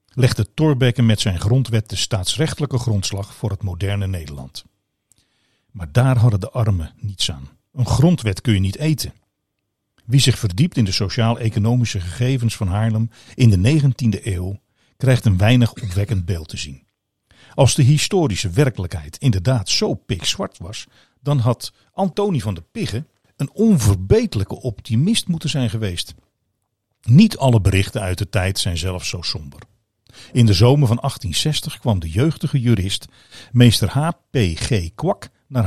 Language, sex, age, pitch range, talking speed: Dutch, male, 50-69, 100-135 Hz, 150 wpm